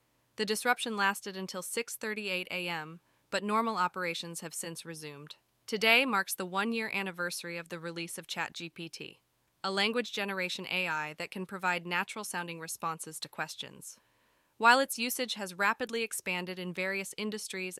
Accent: American